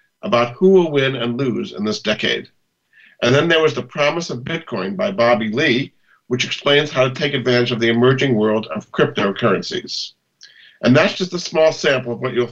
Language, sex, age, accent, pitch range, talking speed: English, male, 50-69, American, 115-150 Hz, 195 wpm